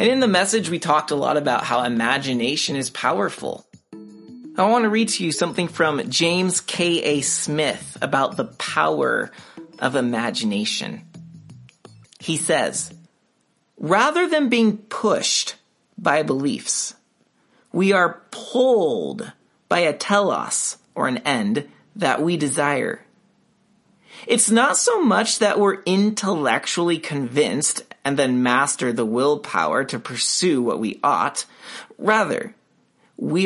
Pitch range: 150-220 Hz